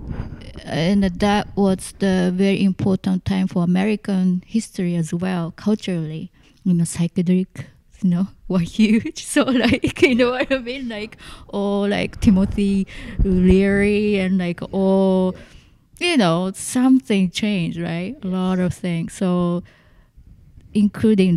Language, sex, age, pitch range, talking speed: English, female, 20-39, 165-200 Hz, 130 wpm